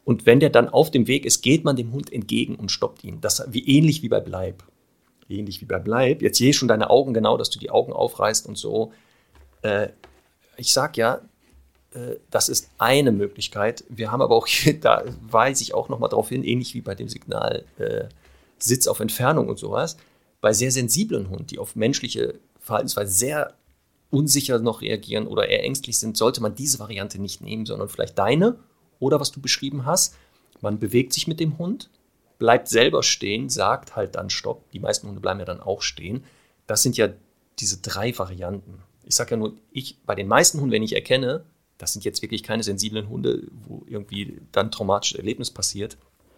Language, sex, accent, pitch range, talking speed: German, male, German, 105-145 Hz, 200 wpm